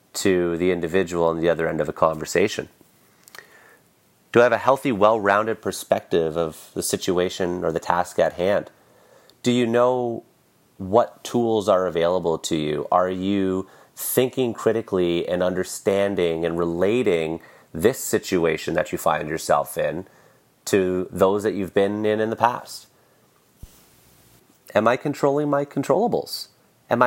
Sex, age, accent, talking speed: male, 30-49, American, 140 wpm